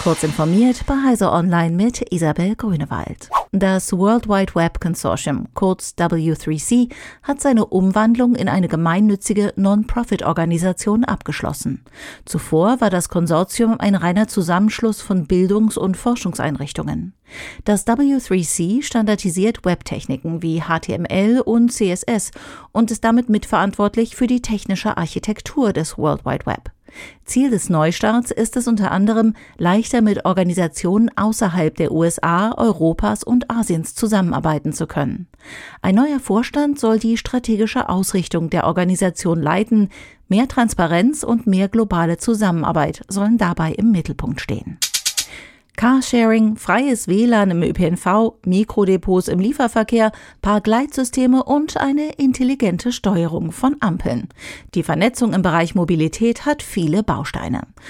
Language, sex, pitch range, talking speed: German, female, 175-230 Hz, 120 wpm